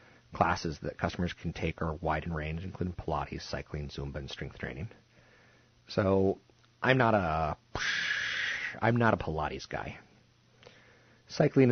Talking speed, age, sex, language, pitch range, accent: 125 wpm, 40-59, male, English, 80-105 Hz, American